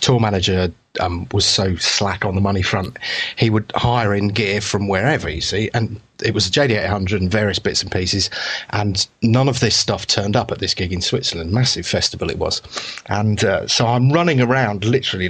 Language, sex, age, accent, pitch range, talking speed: English, male, 30-49, British, 100-130 Hz, 205 wpm